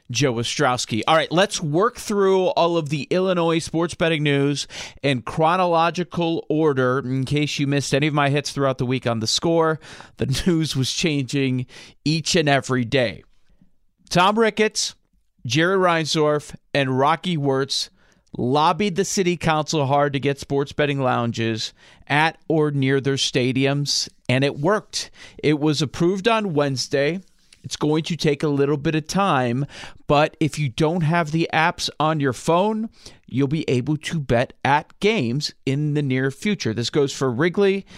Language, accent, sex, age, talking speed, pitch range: English, American, male, 40-59, 165 wpm, 135-170 Hz